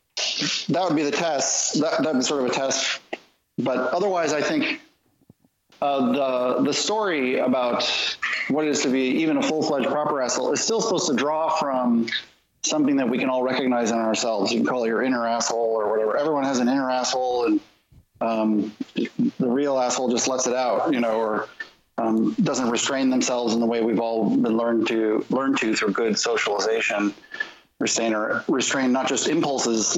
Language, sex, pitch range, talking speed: English, male, 115-145 Hz, 190 wpm